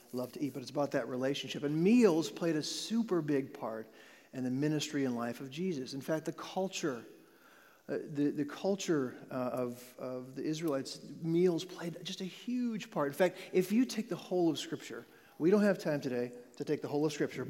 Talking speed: 210 wpm